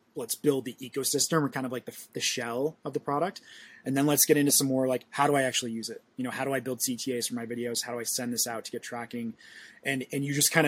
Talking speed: 290 wpm